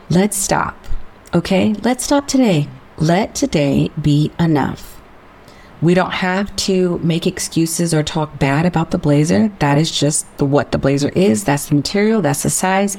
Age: 40-59